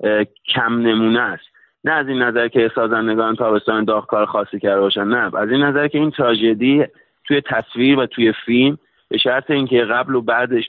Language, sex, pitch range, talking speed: Persian, male, 105-125 Hz, 180 wpm